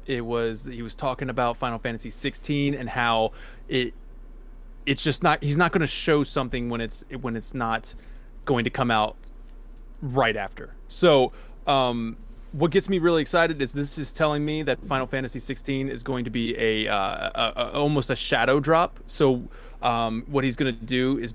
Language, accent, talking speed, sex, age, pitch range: English, American, 190 wpm, male, 20-39, 115-140 Hz